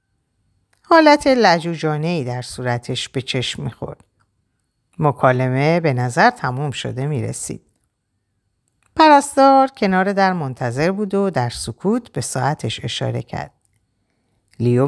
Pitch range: 115-165 Hz